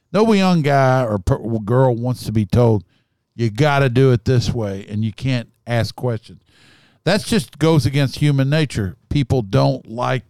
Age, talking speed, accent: 50-69, 180 wpm, American